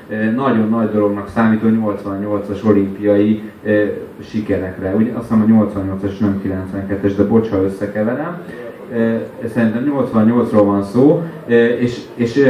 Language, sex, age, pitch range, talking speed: Hungarian, male, 30-49, 105-130 Hz, 130 wpm